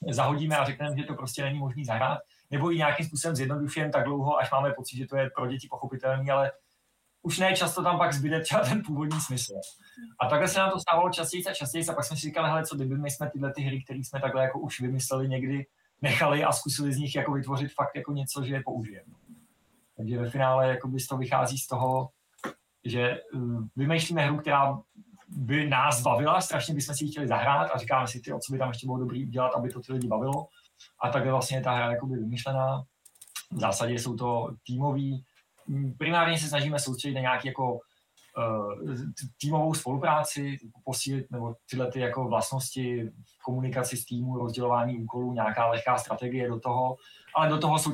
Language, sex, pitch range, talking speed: Czech, male, 125-145 Hz, 195 wpm